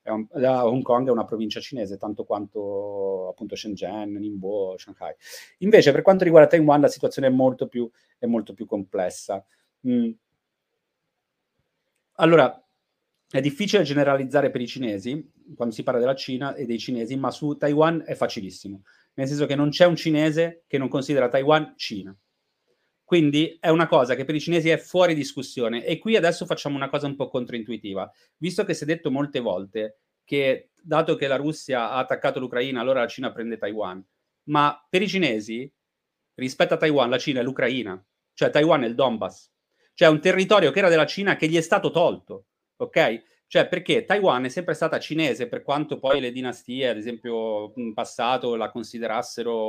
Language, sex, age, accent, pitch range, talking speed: Italian, male, 30-49, native, 115-160 Hz, 175 wpm